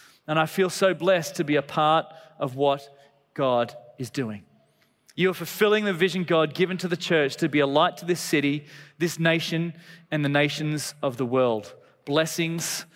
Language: English